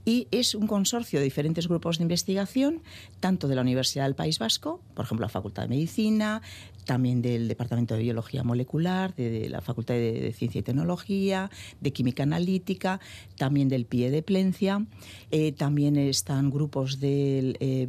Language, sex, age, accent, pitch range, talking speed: Spanish, female, 50-69, Spanish, 120-170 Hz, 170 wpm